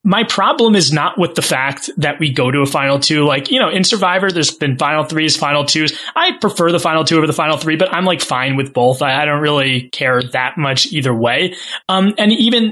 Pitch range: 145-190 Hz